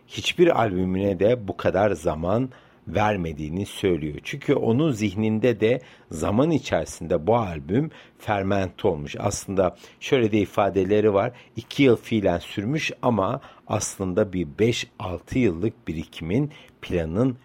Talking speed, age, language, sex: 115 wpm, 60-79, Turkish, male